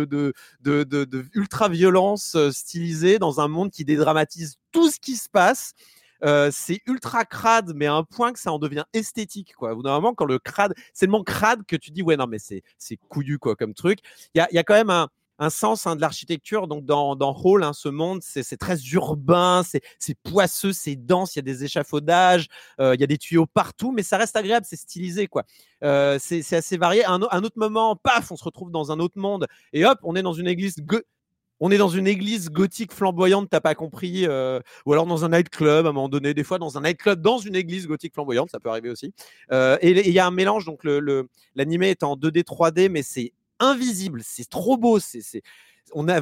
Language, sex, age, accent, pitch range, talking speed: French, male, 30-49, French, 150-205 Hz, 240 wpm